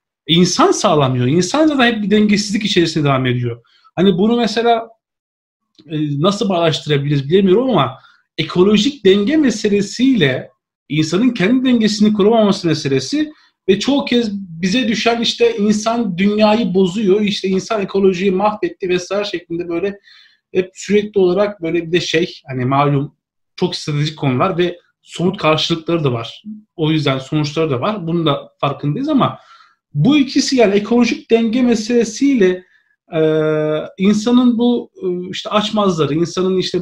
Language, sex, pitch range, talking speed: Turkish, male, 160-210 Hz, 130 wpm